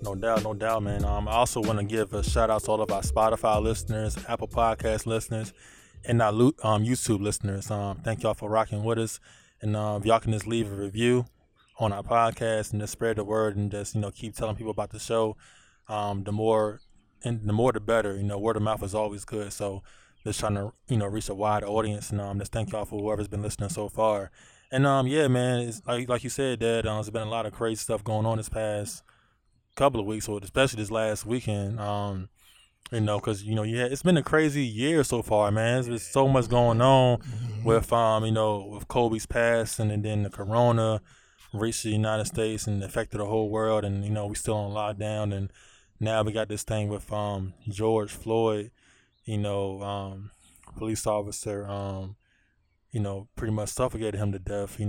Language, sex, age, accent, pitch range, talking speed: English, male, 20-39, American, 105-115 Hz, 225 wpm